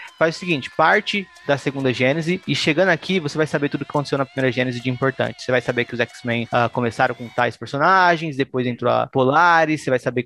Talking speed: 235 wpm